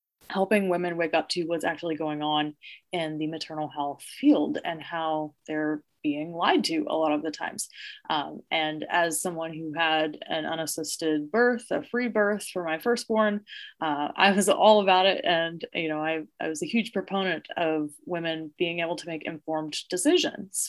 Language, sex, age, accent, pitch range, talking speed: English, female, 20-39, American, 150-185 Hz, 185 wpm